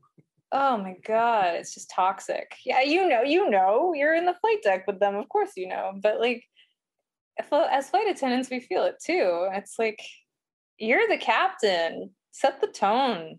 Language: English